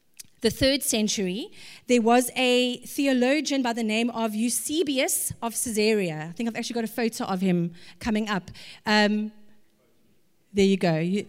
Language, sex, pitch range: English, female, 210-270 Hz